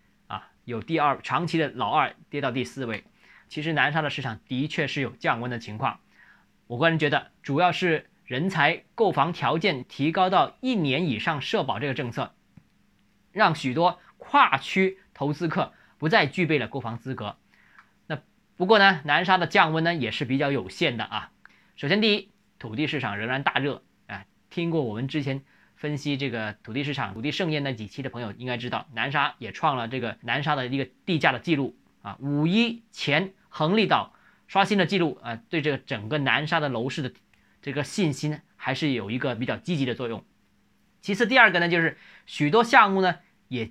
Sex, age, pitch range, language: male, 20-39, 130-175 Hz, Chinese